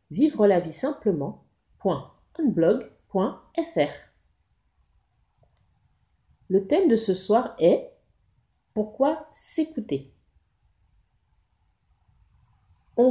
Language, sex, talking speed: French, female, 45 wpm